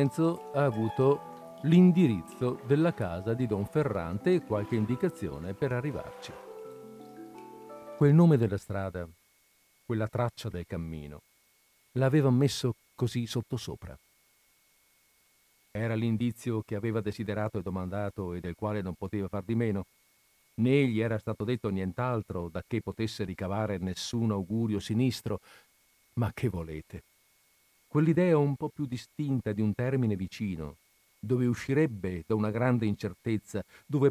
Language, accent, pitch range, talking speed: Italian, native, 100-135 Hz, 125 wpm